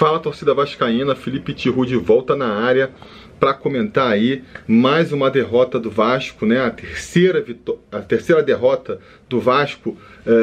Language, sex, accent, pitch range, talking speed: Portuguese, male, Brazilian, 115-175 Hz, 155 wpm